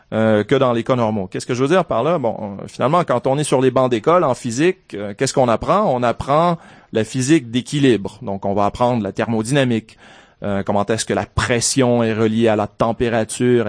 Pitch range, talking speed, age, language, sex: 110-140 Hz, 220 wpm, 30-49, French, male